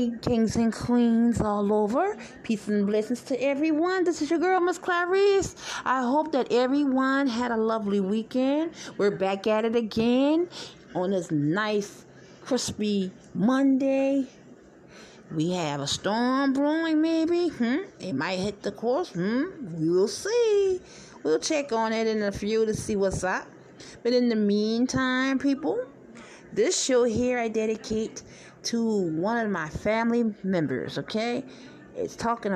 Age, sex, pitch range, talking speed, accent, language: 30-49, female, 195-255 Hz, 145 wpm, American, English